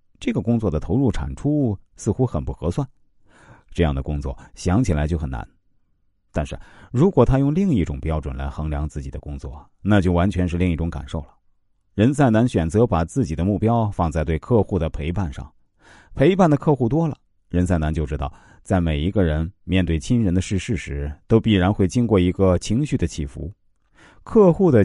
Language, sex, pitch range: Chinese, male, 80-115 Hz